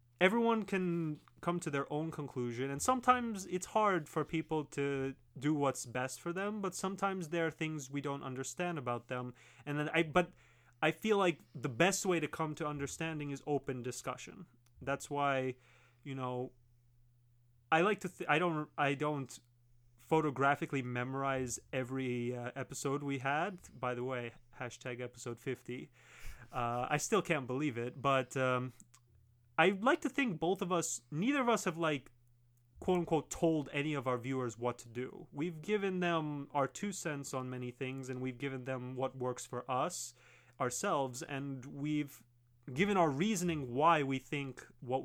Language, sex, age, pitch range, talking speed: English, male, 30-49, 125-165 Hz, 170 wpm